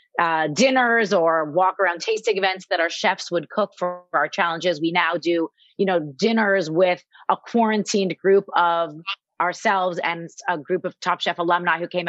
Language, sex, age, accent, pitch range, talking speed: English, female, 30-49, American, 170-215 Hz, 180 wpm